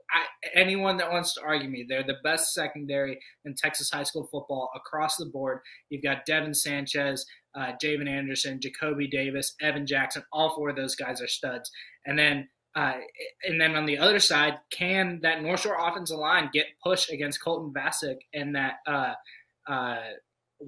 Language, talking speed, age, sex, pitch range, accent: English, 175 wpm, 20-39, male, 145-175 Hz, American